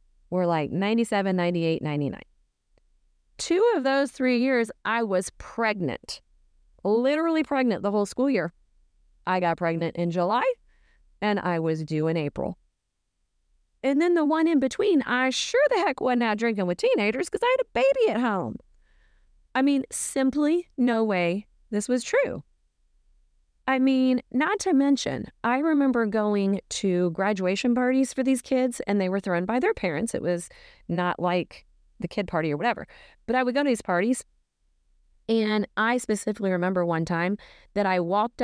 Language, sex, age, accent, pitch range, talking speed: English, female, 30-49, American, 175-260 Hz, 165 wpm